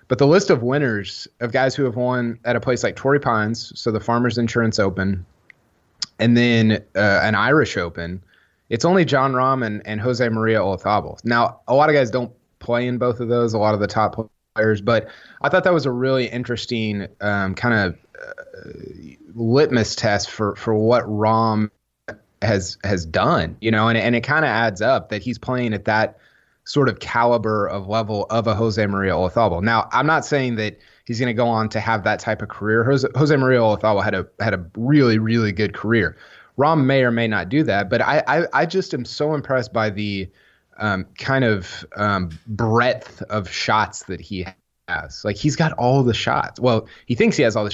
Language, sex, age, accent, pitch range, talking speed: English, male, 30-49, American, 105-125 Hz, 205 wpm